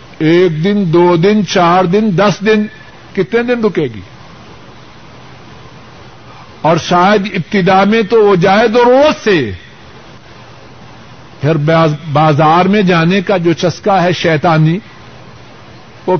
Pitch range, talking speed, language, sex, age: 155-235 Hz, 115 wpm, Urdu, male, 60-79